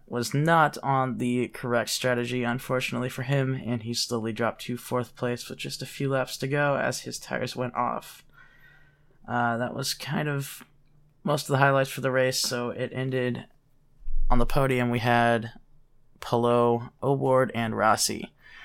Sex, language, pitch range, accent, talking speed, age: male, English, 120-135 Hz, American, 165 wpm, 20-39